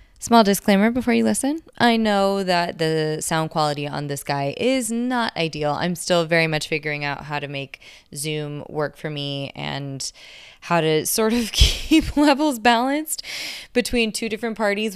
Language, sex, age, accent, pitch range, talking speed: English, female, 20-39, American, 150-210 Hz, 170 wpm